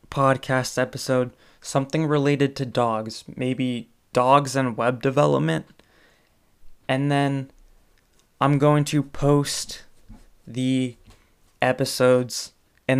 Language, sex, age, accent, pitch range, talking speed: English, male, 20-39, American, 125-140 Hz, 90 wpm